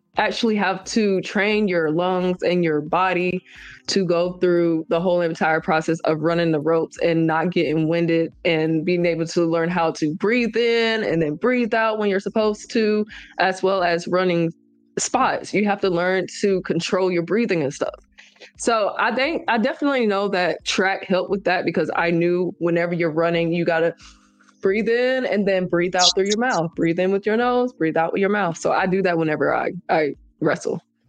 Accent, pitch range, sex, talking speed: American, 165-200 Hz, female, 200 wpm